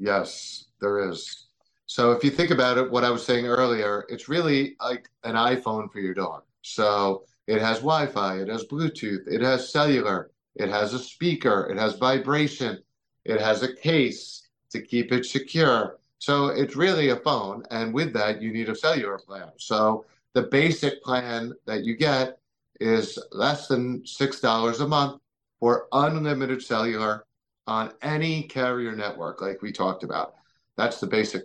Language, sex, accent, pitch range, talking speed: English, male, American, 110-135 Hz, 165 wpm